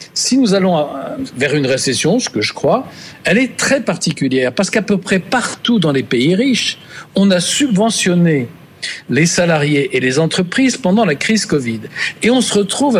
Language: French